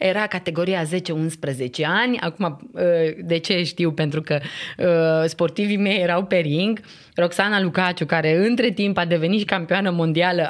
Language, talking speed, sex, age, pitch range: Romanian, 145 wpm, female, 30-49, 170-250 Hz